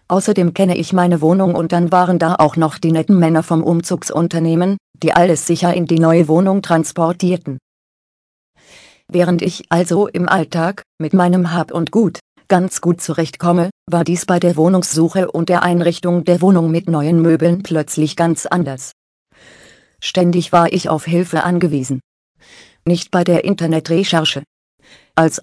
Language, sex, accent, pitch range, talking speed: German, female, German, 160-180 Hz, 150 wpm